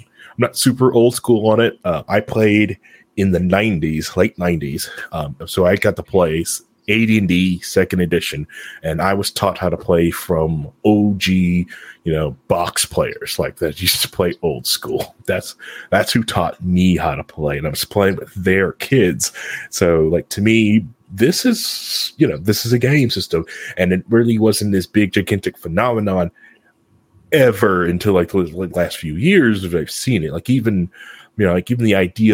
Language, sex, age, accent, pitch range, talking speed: English, male, 30-49, American, 90-110 Hz, 185 wpm